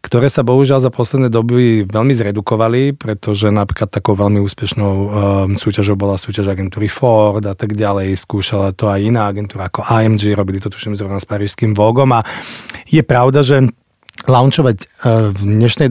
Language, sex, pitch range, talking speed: Czech, male, 105-125 Hz, 165 wpm